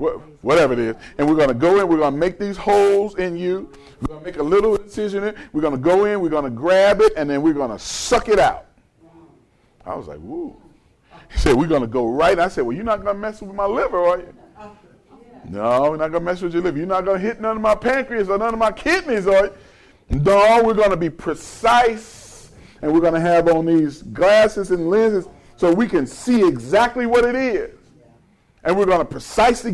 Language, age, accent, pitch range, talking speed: English, 40-59, American, 175-240 Hz, 245 wpm